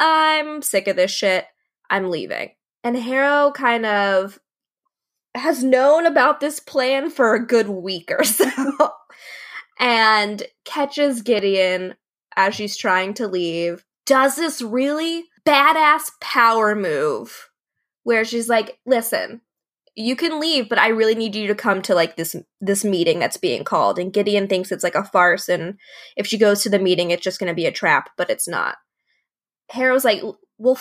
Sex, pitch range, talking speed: female, 195-265 Hz, 165 wpm